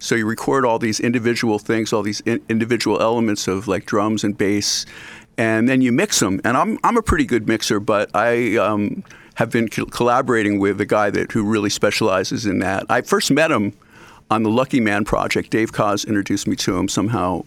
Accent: American